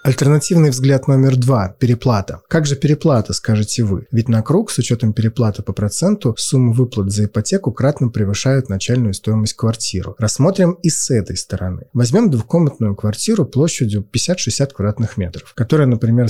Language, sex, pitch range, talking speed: Russian, male, 110-140 Hz, 150 wpm